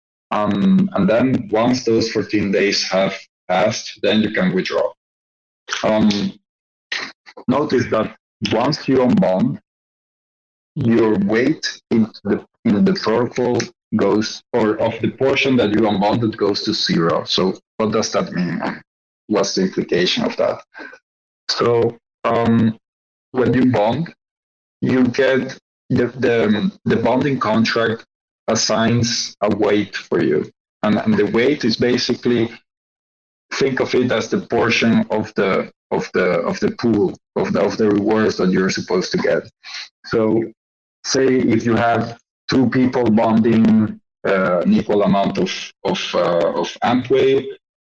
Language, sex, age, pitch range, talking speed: English, male, 50-69, 110-130 Hz, 140 wpm